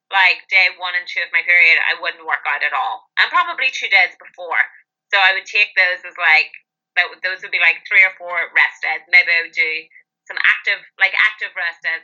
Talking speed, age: 225 wpm, 20-39